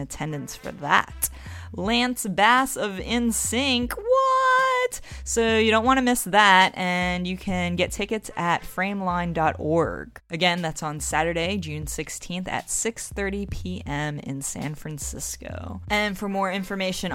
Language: English